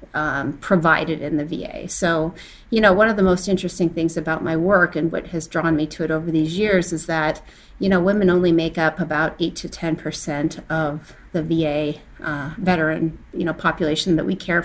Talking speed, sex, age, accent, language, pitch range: 205 wpm, female, 30-49, American, English, 160-185 Hz